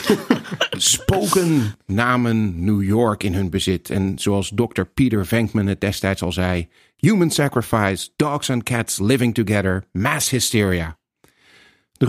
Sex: male